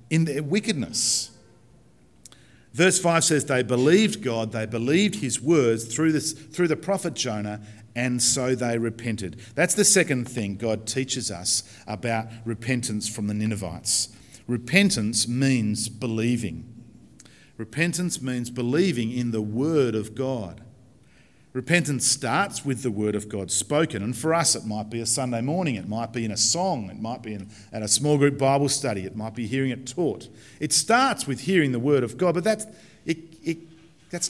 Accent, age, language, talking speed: Australian, 50-69, English, 170 wpm